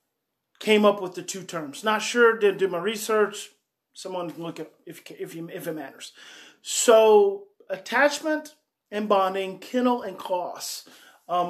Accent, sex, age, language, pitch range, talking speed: American, male, 30-49, English, 175-210 Hz, 155 wpm